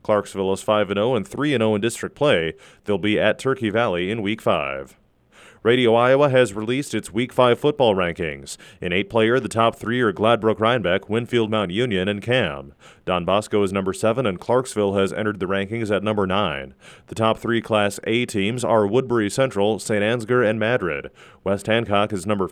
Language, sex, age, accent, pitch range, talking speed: English, male, 30-49, American, 100-115 Hz, 185 wpm